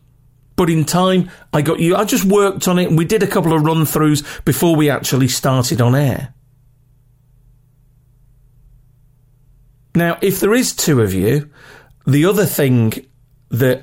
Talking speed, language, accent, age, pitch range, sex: 150 wpm, English, British, 40-59, 130-175 Hz, male